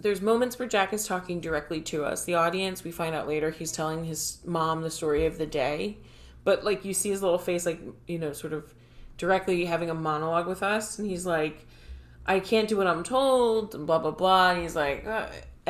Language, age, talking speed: English, 30-49, 220 wpm